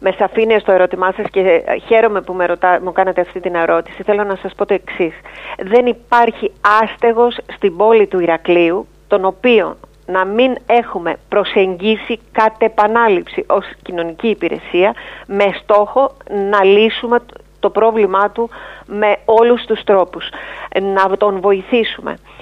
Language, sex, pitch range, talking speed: Greek, female, 185-235 Hz, 140 wpm